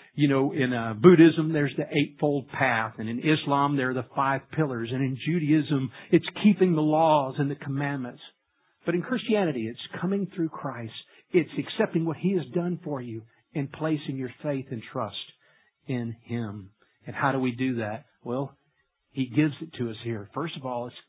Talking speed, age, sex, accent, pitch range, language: 190 wpm, 50-69, male, American, 130-175 Hz, English